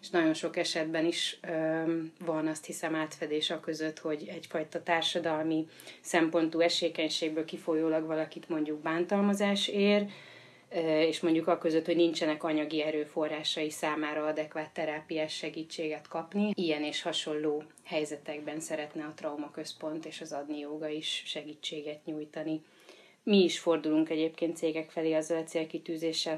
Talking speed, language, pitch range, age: 125 wpm, Hungarian, 155-165 Hz, 30-49